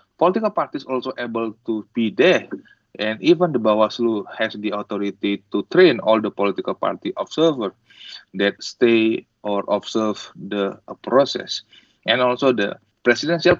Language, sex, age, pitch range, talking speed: English, male, 30-49, 105-125 Hz, 135 wpm